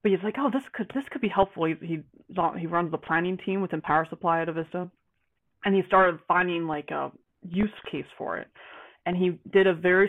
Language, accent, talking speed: English, American, 220 wpm